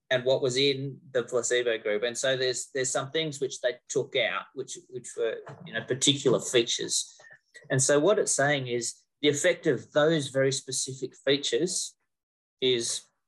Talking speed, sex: 170 wpm, male